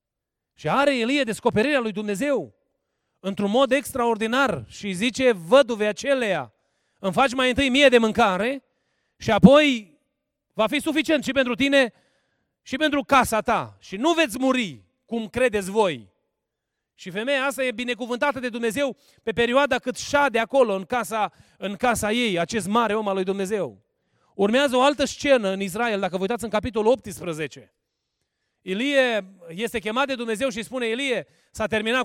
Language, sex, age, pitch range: Romanian, male, 30-49, 200-255 Hz